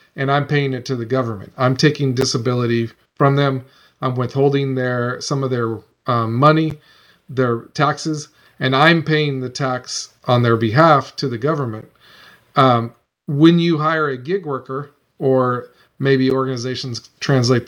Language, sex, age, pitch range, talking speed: English, male, 40-59, 130-155 Hz, 150 wpm